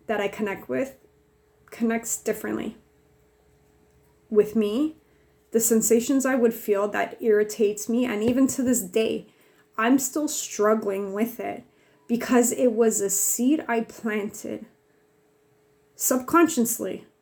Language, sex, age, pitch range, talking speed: English, female, 30-49, 195-235 Hz, 120 wpm